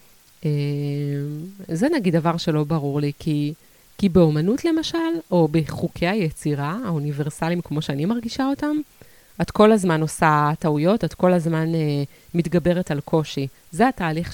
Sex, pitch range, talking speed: female, 150-195 Hz, 140 wpm